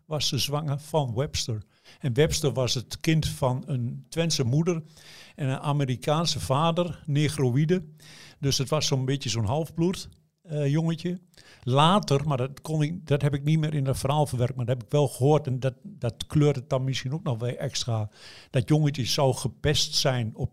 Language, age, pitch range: Dutch, 50-69, 130-155 Hz